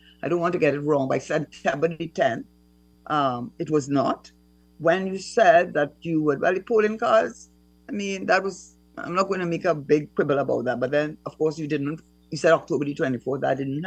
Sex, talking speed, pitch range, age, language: female, 230 wpm, 135-180 Hz, 60-79, English